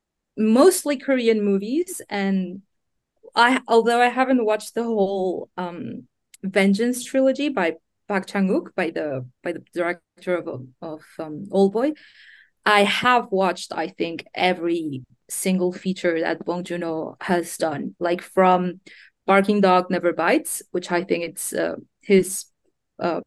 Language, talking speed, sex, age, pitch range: English, 140 wpm, female, 20-39, 185-240 Hz